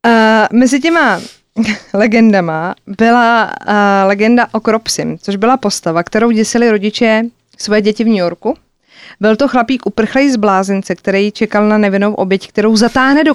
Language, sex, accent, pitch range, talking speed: Czech, female, native, 205-245 Hz, 155 wpm